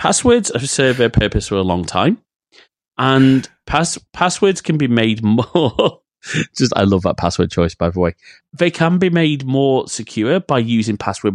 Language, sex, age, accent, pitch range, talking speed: English, male, 30-49, British, 100-145 Hz, 180 wpm